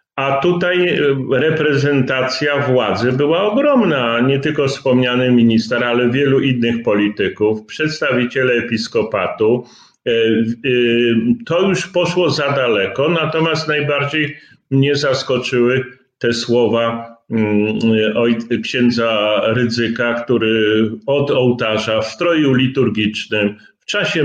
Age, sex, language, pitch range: 40-59, male, Polish, 120-150 Hz